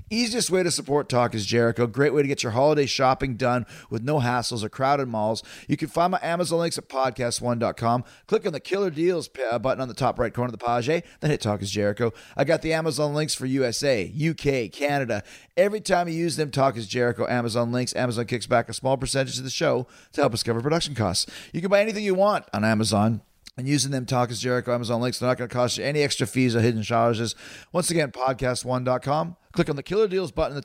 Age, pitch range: 30-49, 120-155 Hz